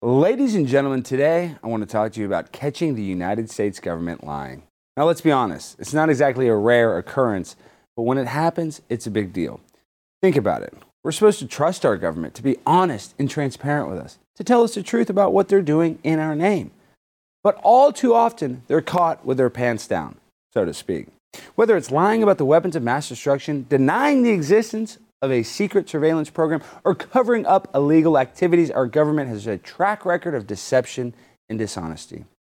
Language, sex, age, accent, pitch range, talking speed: English, male, 30-49, American, 120-185 Hz, 200 wpm